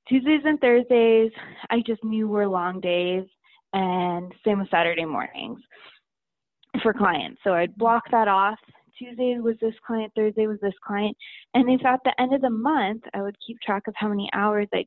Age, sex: 20-39, female